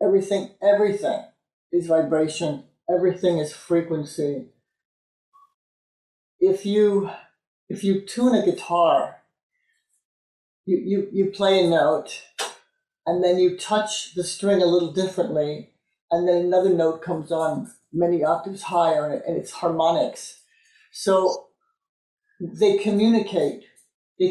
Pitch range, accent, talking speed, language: 170-210 Hz, American, 110 wpm, English